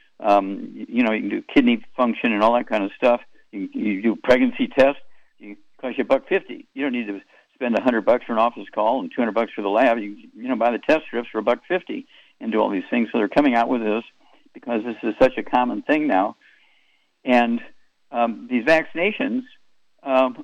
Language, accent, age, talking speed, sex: English, American, 60-79, 230 wpm, male